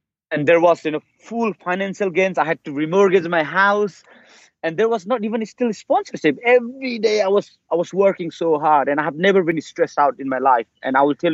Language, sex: English, male